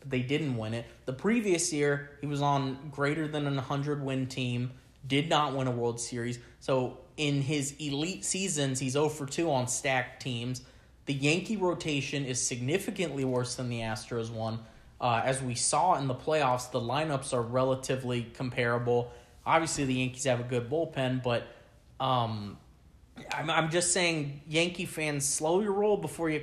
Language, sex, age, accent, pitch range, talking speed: English, male, 20-39, American, 125-155 Hz, 165 wpm